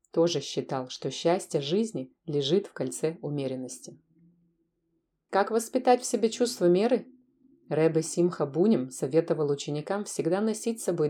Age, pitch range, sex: 30-49, 145-185 Hz, female